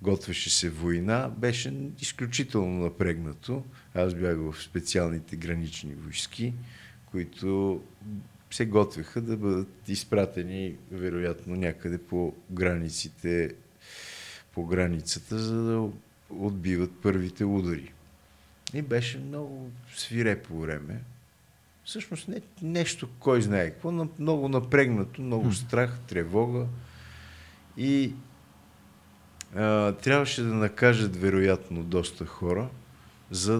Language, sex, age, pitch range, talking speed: Bulgarian, male, 50-69, 85-120 Hz, 90 wpm